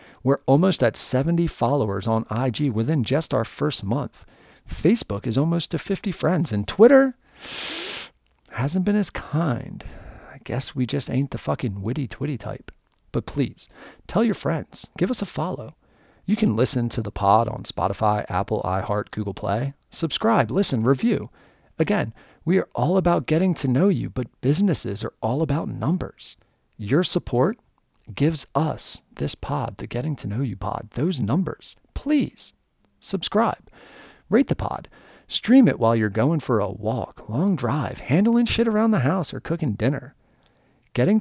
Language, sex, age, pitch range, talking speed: English, male, 40-59, 115-165 Hz, 160 wpm